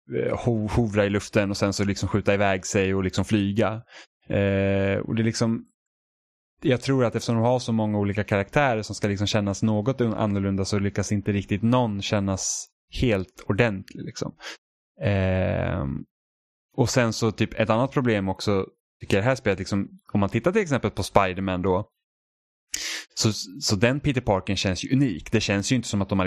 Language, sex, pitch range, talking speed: Swedish, male, 95-115 Hz, 185 wpm